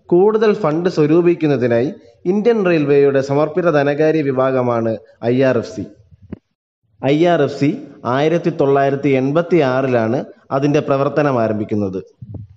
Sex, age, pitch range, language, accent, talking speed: male, 20-39, 125-165 Hz, Malayalam, native, 110 wpm